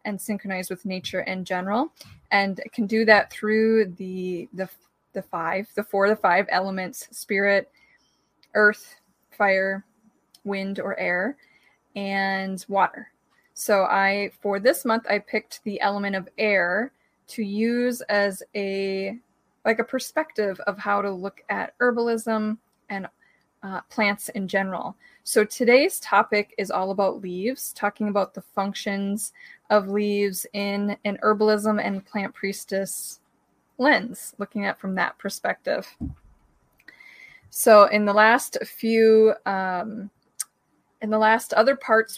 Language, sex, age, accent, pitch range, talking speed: English, female, 20-39, American, 195-220 Hz, 130 wpm